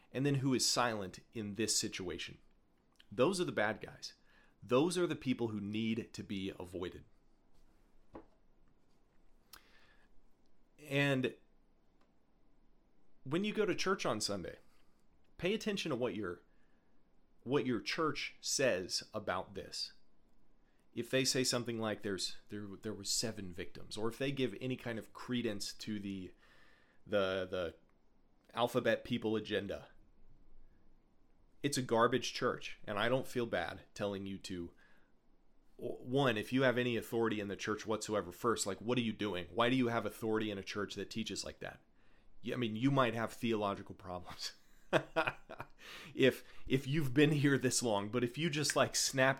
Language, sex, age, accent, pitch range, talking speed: English, male, 30-49, American, 105-130 Hz, 155 wpm